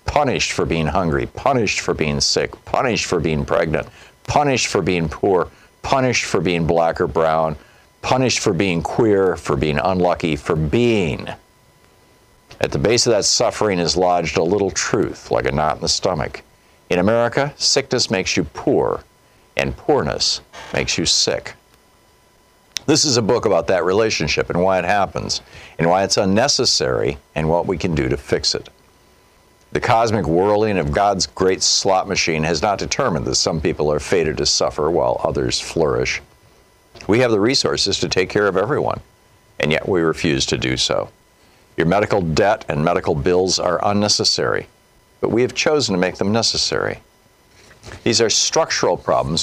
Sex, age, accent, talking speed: male, 60-79, American, 170 wpm